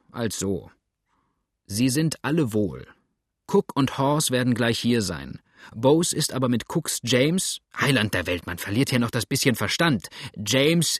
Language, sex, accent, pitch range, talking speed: German, male, German, 105-130 Hz, 165 wpm